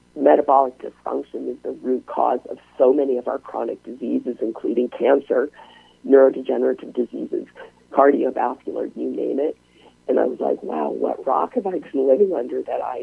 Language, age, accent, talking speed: English, 50-69, American, 160 wpm